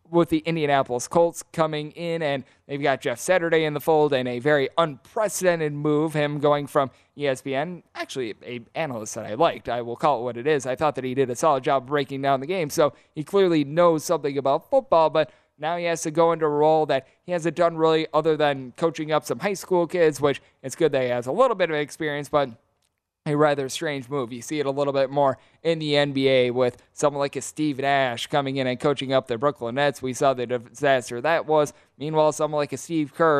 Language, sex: English, male